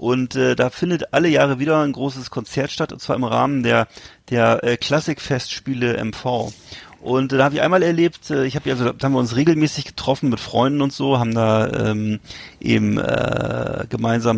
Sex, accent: male, German